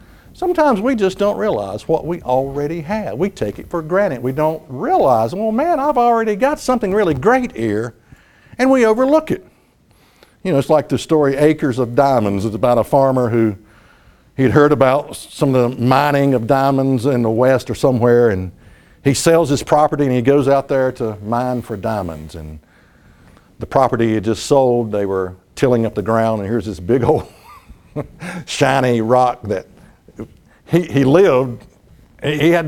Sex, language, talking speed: male, English, 180 wpm